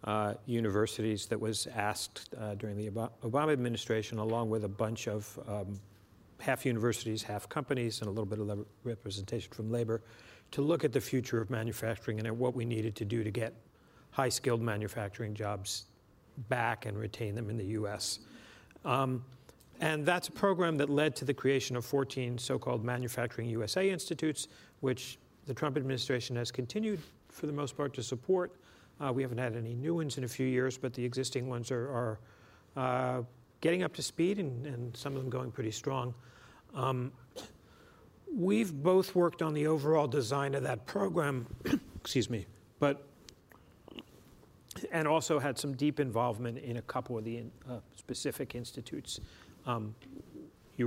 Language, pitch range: English, 110-140 Hz